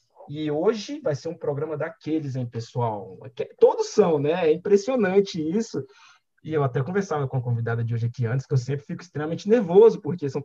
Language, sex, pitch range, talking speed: Portuguese, male, 135-175 Hz, 195 wpm